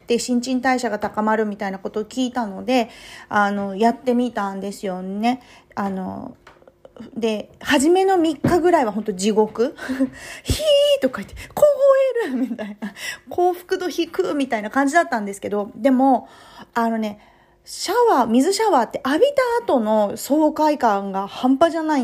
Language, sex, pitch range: Japanese, female, 210-280 Hz